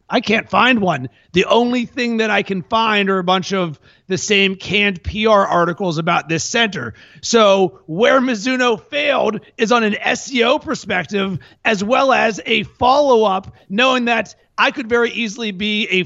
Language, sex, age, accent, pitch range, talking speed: English, male, 30-49, American, 195-240 Hz, 170 wpm